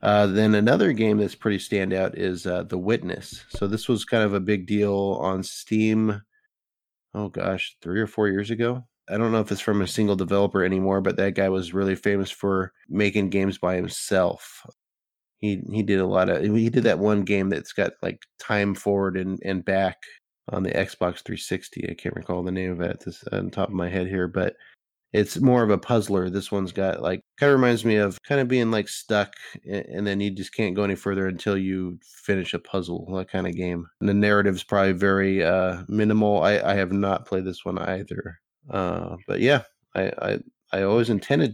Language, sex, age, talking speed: English, male, 20-39, 210 wpm